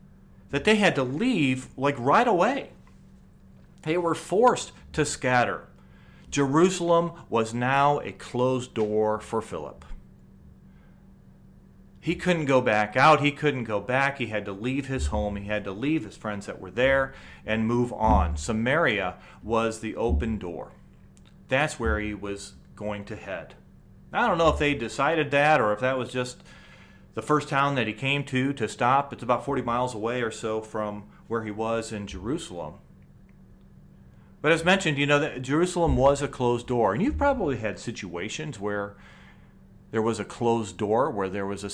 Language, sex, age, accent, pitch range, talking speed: English, male, 40-59, American, 105-140 Hz, 175 wpm